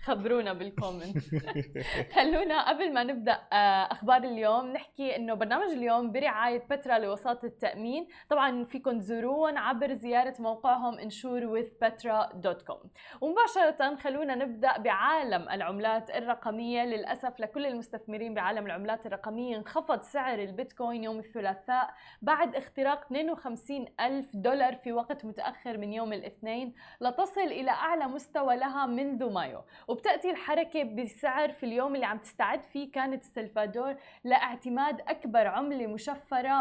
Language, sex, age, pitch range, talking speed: Arabic, female, 20-39, 230-280 Hz, 120 wpm